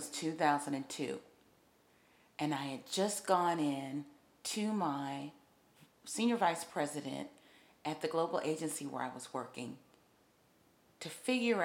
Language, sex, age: English, female, 40-59